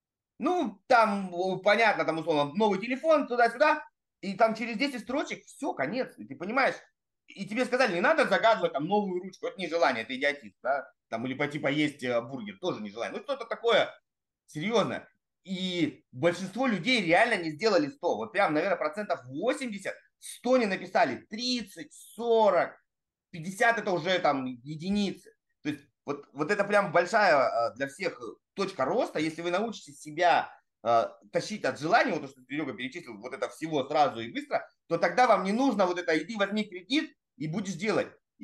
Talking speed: 170 wpm